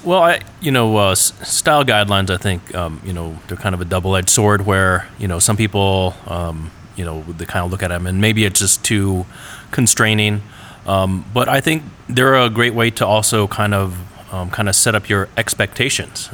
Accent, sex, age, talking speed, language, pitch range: American, male, 30-49, 210 wpm, English, 90-110 Hz